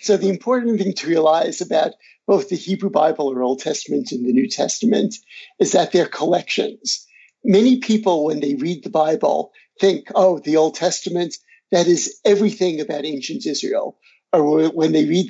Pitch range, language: 165-215 Hz, English